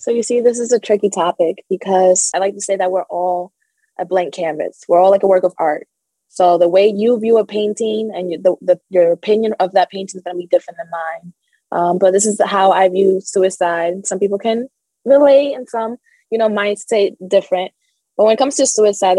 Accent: American